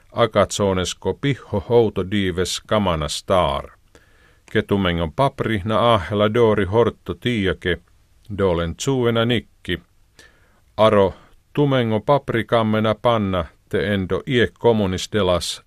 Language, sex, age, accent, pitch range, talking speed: Finnish, male, 50-69, native, 90-115 Hz, 90 wpm